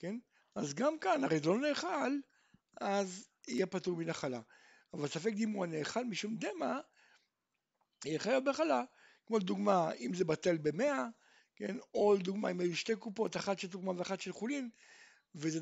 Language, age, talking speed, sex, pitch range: Hebrew, 60-79, 160 wpm, male, 175-255 Hz